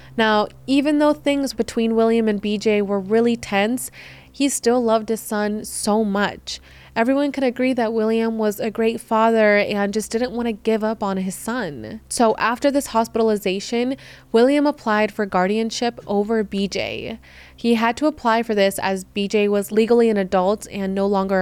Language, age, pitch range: English, 20-39, 205-235 Hz